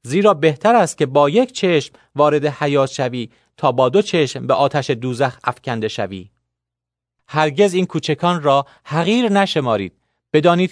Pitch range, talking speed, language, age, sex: 145-200 Hz, 145 wpm, Persian, 40-59, male